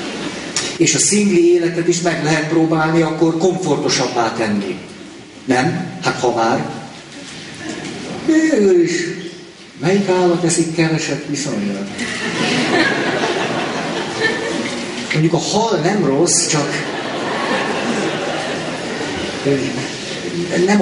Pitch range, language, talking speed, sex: 125-170 Hz, Hungarian, 85 wpm, male